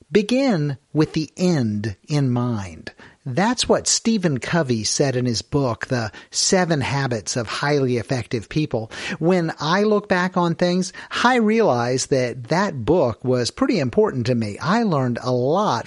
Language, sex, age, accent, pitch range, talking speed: English, male, 50-69, American, 135-200 Hz, 155 wpm